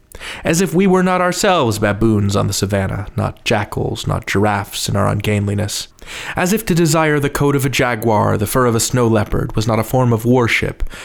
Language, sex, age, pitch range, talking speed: English, male, 30-49, 105-140 Hz, 205 wpm